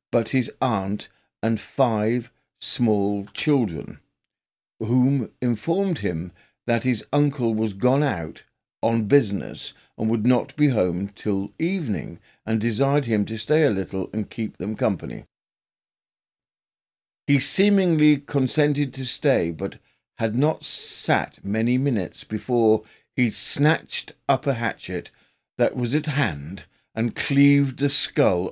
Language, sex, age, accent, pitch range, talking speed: English, male, 50-69, British, 110-140 Hz, 130 wpm